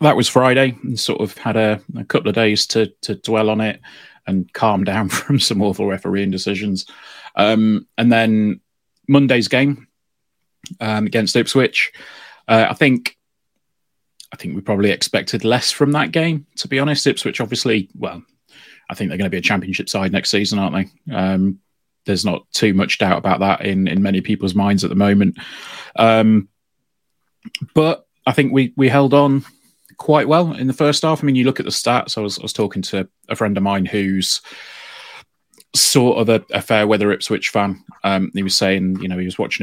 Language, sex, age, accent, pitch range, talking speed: English, male, 30-49, British, 95-125 Hz, 195 wpm